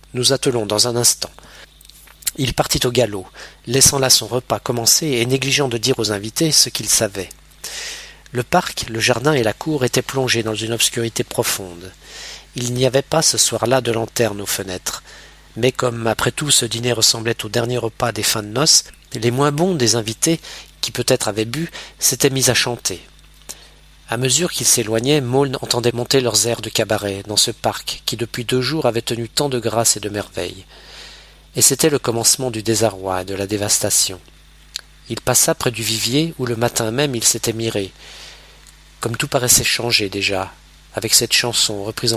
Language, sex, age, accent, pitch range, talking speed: French, male, 40-59, French, 110-125 Hz, 185 wpm